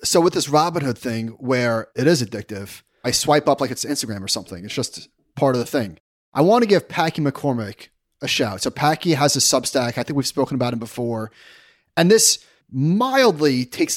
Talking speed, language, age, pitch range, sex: 200 wpm, English, 30-49, 120-155 Hz, male